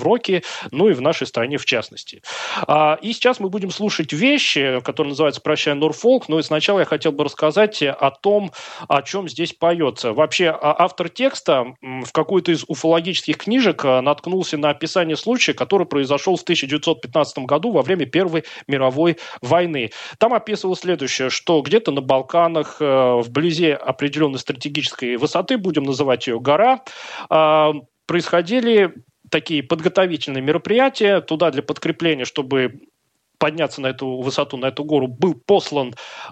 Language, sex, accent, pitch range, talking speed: Russian, male, native, 140-185 Hz, 145 wpm